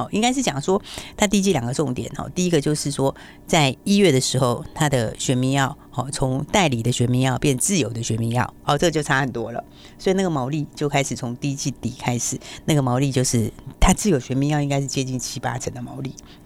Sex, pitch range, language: female, 130-155 Hz, Chinese